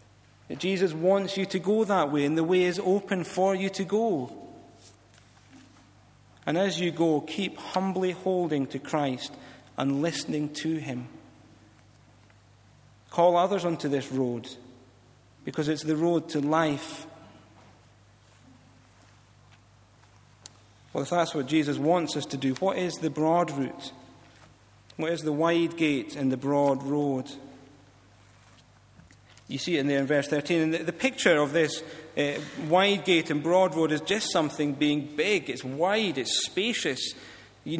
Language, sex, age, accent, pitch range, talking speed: English, male, 40-59, British, 120-175 Hz, 150 wpm